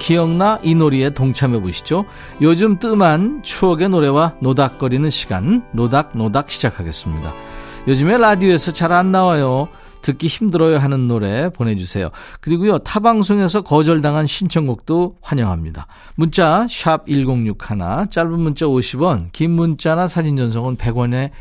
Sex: male